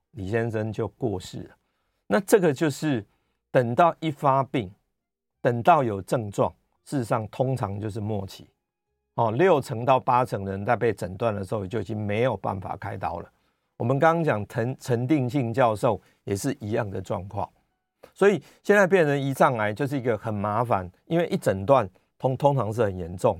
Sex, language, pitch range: male, Chinese, 110-160 Hz